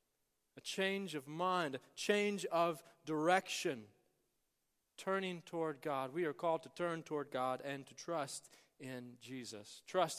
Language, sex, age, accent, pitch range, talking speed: English, male, 40-59, American, 140-180 Hz, 140 wpm